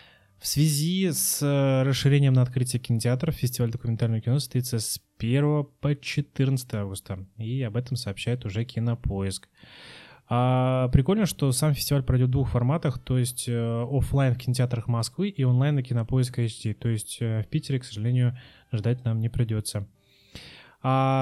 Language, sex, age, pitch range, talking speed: Russian, male, 20-39, 115-130 Hz, 155 wpm